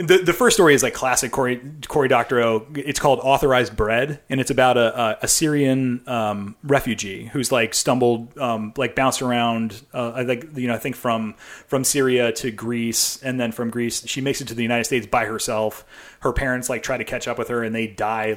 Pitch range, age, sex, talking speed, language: 115-135 Hz, 30-49, male, 220 wpm, English